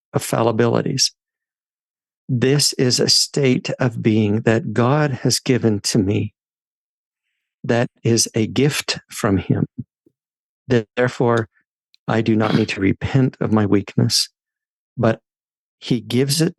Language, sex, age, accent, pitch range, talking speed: English, male, 50-69, American, 110-135 Hz, 125 wpm